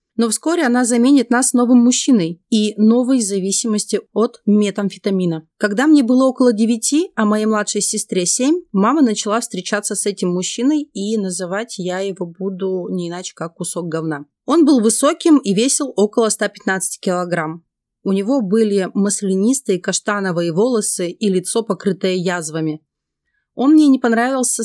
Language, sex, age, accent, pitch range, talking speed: Russian, female, 30-49, native, 190-240 Hz, 145 wpm